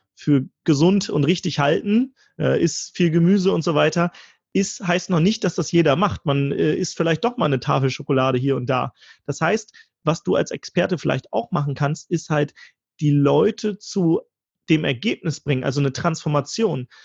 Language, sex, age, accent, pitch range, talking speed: German, male, 30-49, German, 145-195 Hz, 185 wpm